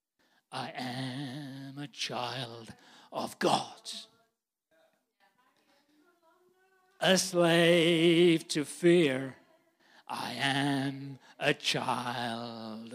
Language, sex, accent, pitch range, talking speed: English, male, British, 170-260 Hz, 65 wpm